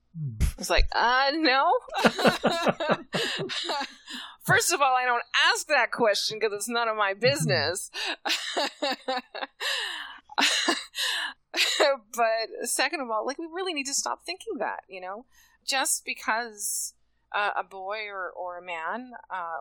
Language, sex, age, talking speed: English, female, 20-39, 130 wpm